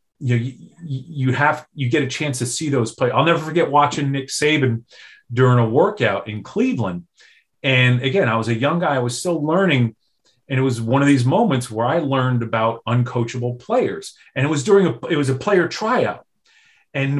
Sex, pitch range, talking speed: male, 130-195 Hz, 200 wpm